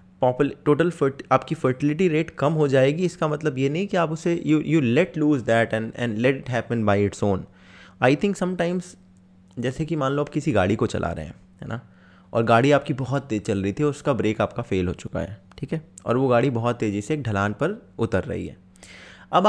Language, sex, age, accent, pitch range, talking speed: Hindi, male, 20-39, native, 105-150 Hz, 235 wpm